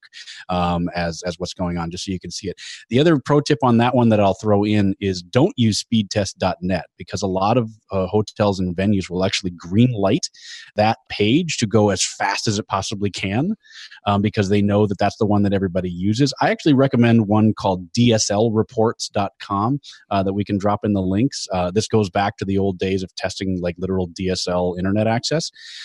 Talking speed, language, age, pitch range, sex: 205 wpm, English, 30-49, 95-115 Hz, male